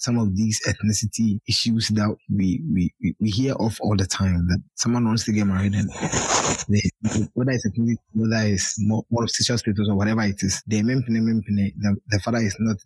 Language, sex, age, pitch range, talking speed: English, male, 20-39, 110-130 Hz, 180 wpm